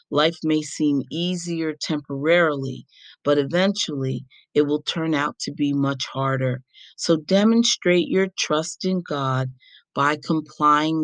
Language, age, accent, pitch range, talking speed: English, 40-59, American, 140-165 Hz, 125 wpm